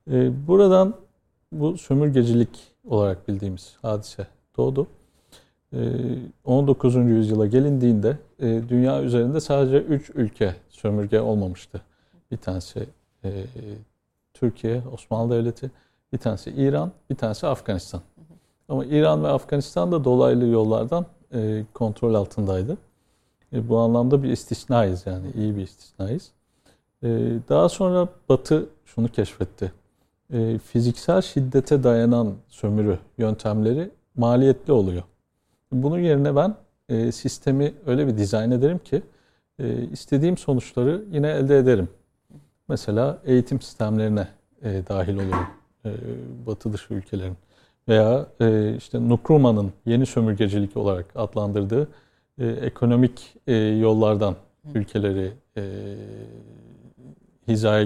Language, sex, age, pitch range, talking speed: Turkish, male, 50-69, 105-135 Hz, 95 wpm